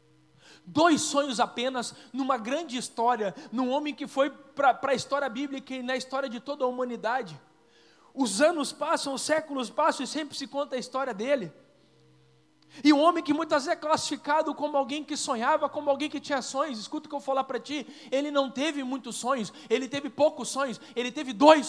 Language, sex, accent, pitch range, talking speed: Portuguese, male, Brazilian, 255-310 Hz, 200 wpm